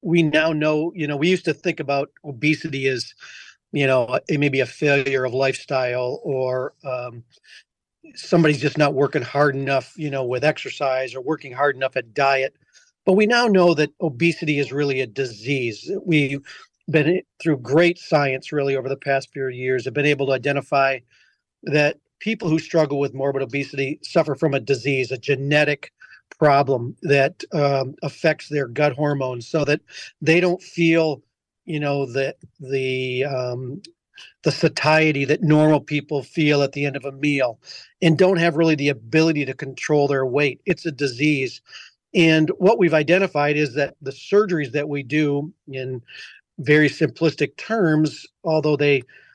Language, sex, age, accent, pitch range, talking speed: English, male, 40-59, American, 135-155 Hz, 170 wpm